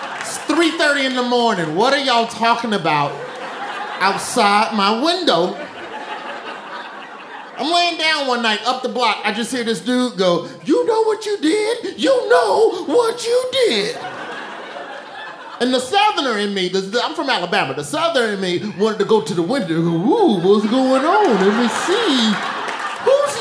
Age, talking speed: 30-49, 160 wpm